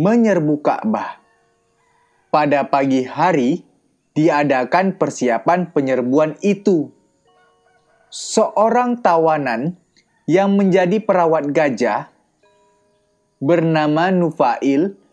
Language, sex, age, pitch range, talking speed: Indonesian, male, 20-39, 160-210 Hz, 65 wpm